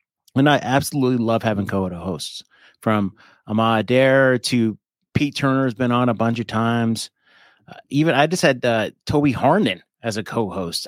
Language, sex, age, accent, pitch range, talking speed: English, male, 30-49, American, 110-130 Hz, 165 wpm